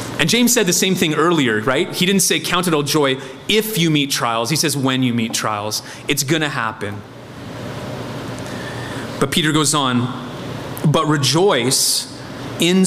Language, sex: English, male